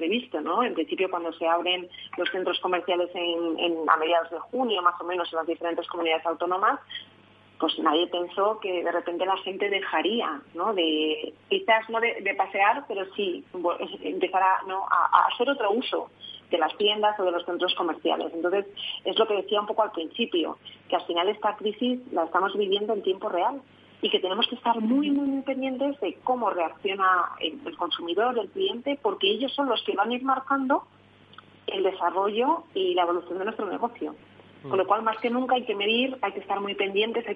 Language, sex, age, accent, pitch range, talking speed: Spanish, female, 30-49, Spanish, 180-245 Hz, 200 wpm